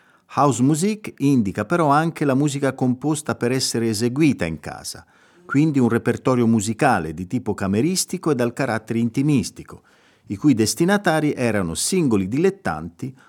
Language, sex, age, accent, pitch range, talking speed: Italian, male, 40-59, native, 100-145 Hz, 130 wpm